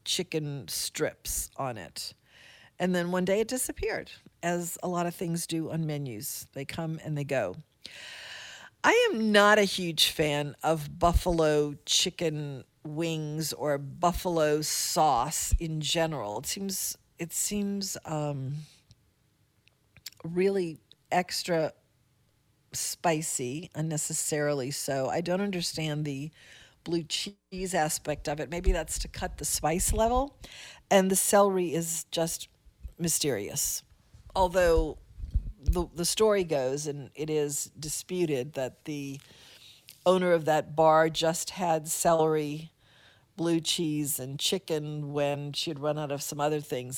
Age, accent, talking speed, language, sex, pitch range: 50-69, American, 130 wpm, English, female, 145-180 Hz